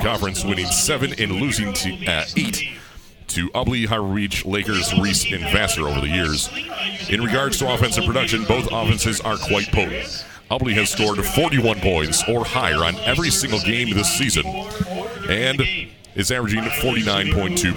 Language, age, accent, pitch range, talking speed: English, 40-59, American, 90-120 Hz, 150 wpm